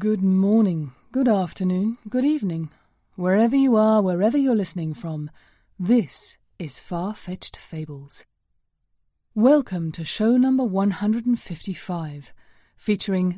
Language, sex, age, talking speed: English, female, 30-49, 105 wpm